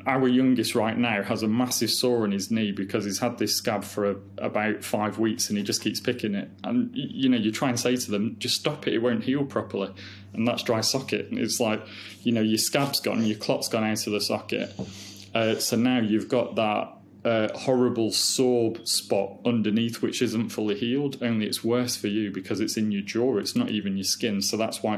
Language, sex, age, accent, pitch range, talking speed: English, male, 20-39, British, 105-120 Hz, 230 wpm